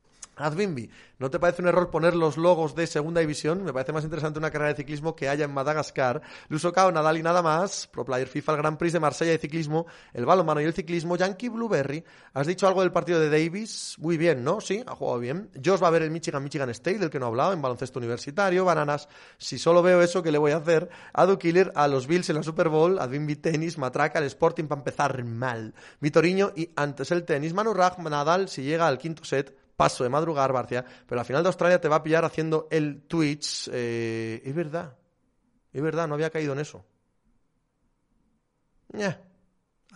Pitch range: 140-175 Hz